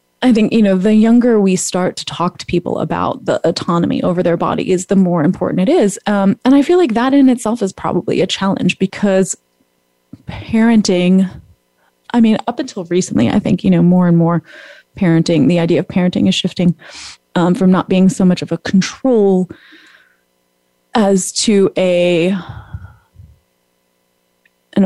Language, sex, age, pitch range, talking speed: English, female, 20-39, 160-200 Hz, 165 wpm